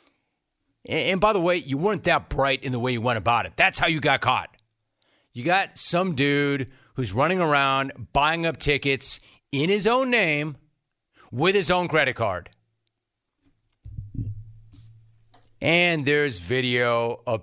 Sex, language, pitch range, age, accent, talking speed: male, English, 110-145 Hz, 40-59, American, 150 wpm